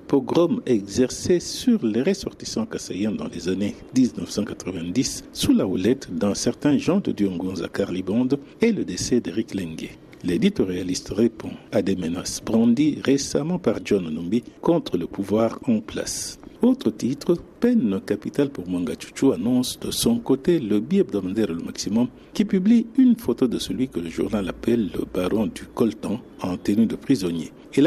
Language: French